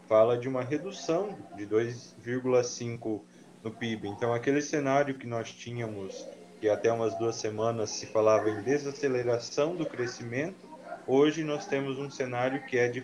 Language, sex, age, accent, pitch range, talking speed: Portuguese, male, 20-39, Brazilian, 105-135 Hz, 150 wpm